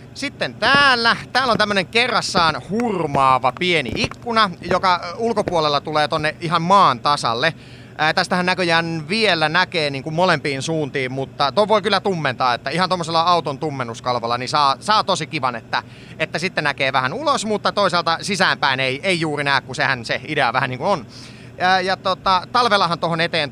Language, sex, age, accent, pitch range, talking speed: Finnish, male, 30-49, native, 135-195 Hz, 170 wpm